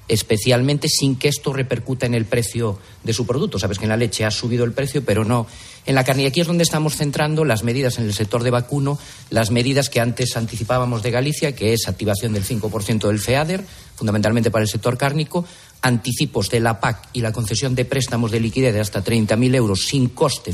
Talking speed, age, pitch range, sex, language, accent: 215 wpm, 40-59, 110-135 Hz, male, Spanish, Spanish